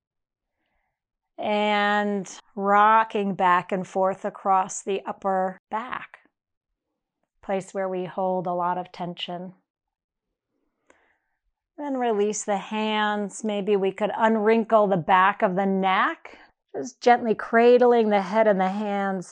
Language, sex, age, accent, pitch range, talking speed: English, female, 40-59, American, 190-225 Hz, 120 wpm